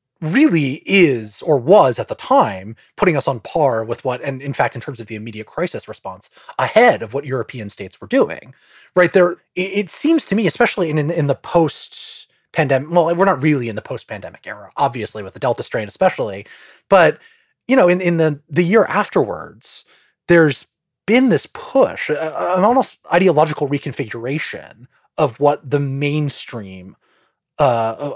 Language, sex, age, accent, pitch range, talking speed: English, male, 30-49, American, 110-165 Hz, 165 wpm